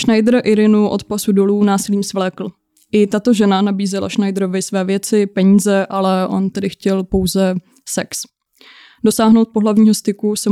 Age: 20-39